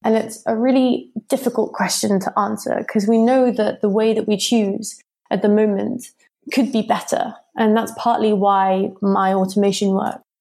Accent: British